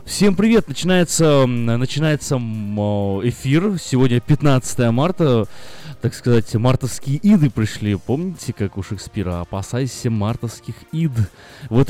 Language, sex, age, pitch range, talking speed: Russian, male, 20-39, 115-150 Hz, 105 wpm